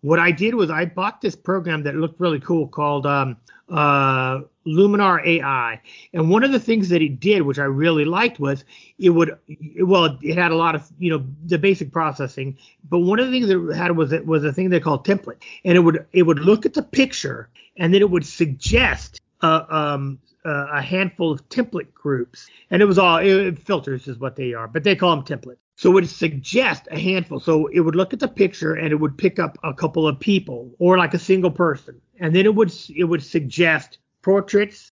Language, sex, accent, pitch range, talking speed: English, male, American, 145-185 Hz, 225 wpm